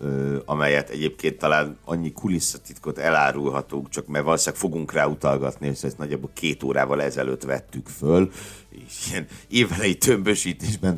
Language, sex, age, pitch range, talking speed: Hungarian, male, 60-79, 75-95 Hz, 130 wpm